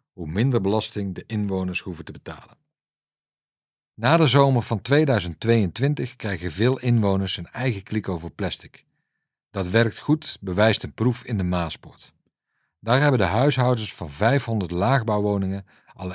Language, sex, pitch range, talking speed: Dutch, male, 95-125 Hz, 140 wpm